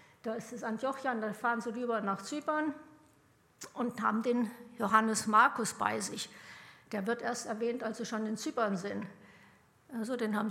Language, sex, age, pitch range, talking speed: German, female, 60-79, 220-255 Hz, 170 wpm